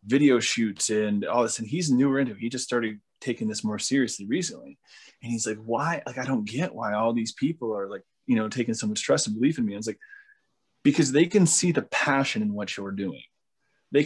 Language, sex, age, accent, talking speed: English, male, 20-39, American, 245 wpm